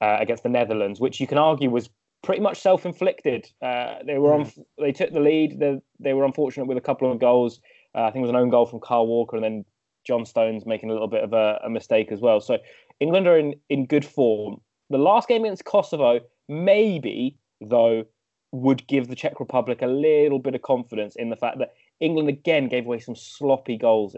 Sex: male